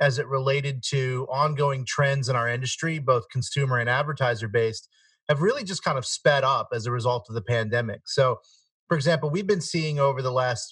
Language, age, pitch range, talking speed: English, 30-49, 125-150 Hz, 200 wpm